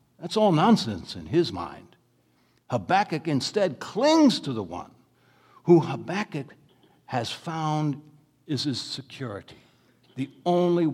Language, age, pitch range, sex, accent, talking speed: English, 60-79, 120-180 Hz, male, American, 115 wpm